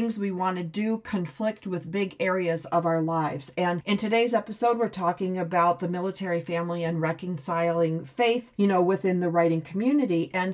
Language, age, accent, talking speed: English, 40-59, American, 175 wpm